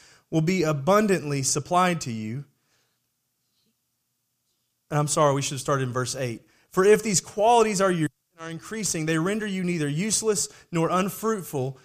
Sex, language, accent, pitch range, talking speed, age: male, English, American, 145-205 Hz, 155 wpm, 30-49